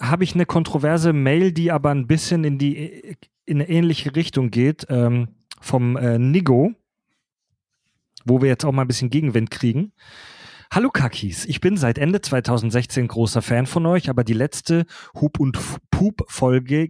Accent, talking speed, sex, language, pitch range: German, 165 wpm, male, German, 125-165 Hz